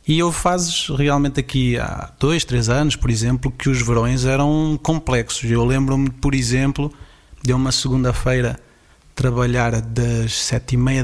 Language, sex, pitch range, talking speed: Portuguese, male, 120-145 Hz, 150 wpm